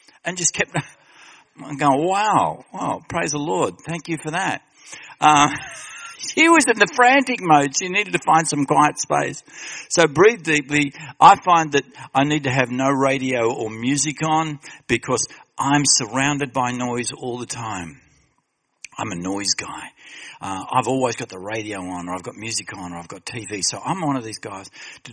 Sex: male